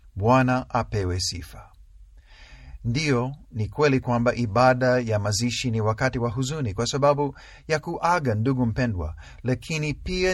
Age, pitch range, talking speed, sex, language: 50-69, 85-135 Hz, 130 wpm, male, Swahili